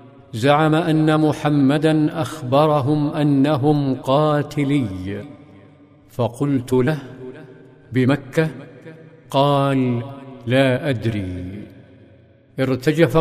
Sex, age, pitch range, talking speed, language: male, 50-69, 135-160 Hz, 60 wpm, Arabic